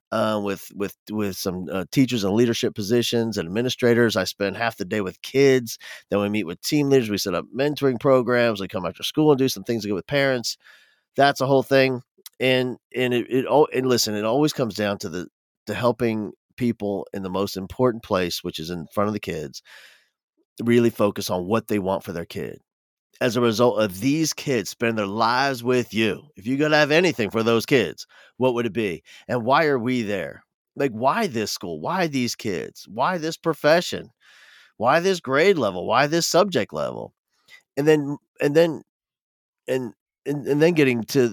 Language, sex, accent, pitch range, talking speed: English, male, American, 105-140 Hz, 200 wpm